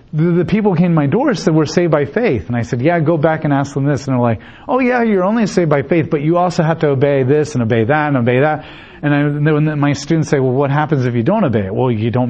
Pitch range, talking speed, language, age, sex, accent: 125-165 Hz, 300 wpm, English, 40-59, male, American